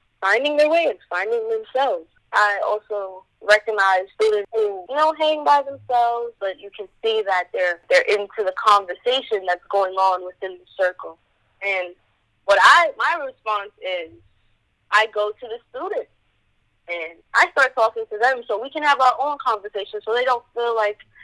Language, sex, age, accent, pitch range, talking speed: English, female, 20-39, American, 190-260 Hz, 175 wpm